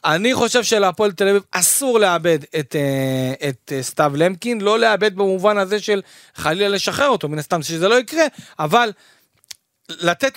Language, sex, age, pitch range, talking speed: Hebrew, male, 40-59, 165-230 Hz, 150 wpm